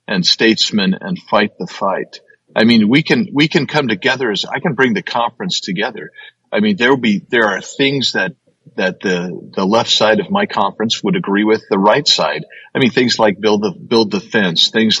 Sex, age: male, 50-69